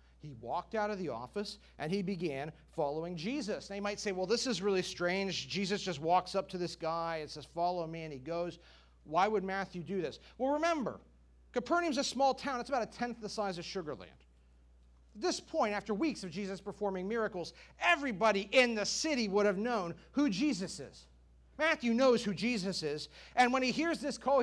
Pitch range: 160-235 Hz